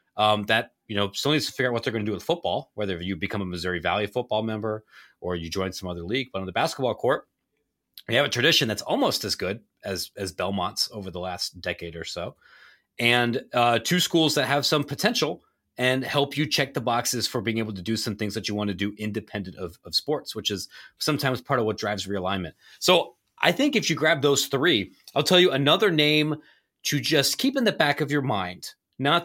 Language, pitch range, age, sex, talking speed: English, 95-135 Hz, 30-49, male, 230 wpm